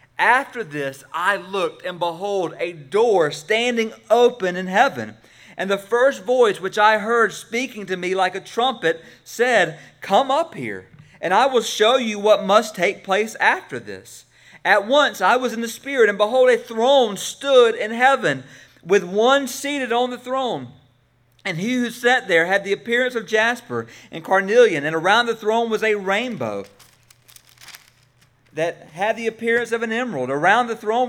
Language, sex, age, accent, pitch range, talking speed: English, male, 40-59, American, 165-235 Hz, 170 wpm